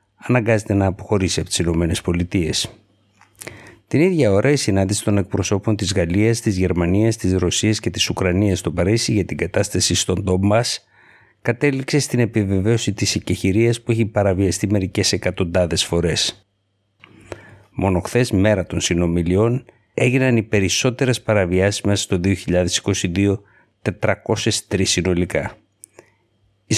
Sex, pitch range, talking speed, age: male, 95-115 Hz, 125 wpm, 60-79